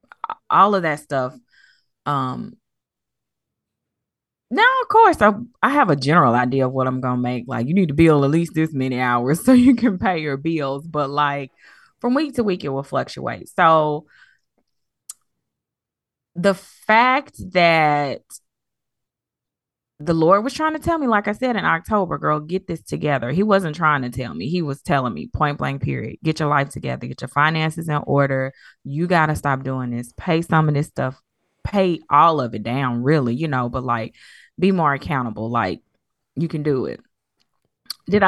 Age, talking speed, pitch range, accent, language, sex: 20-39, 185 wpm, 130-190 Hz, American, English, female